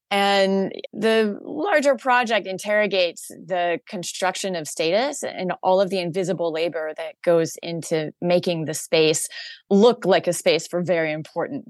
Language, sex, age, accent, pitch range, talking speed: English, female, 20-39, American, 160-185 Hz, 145 wpm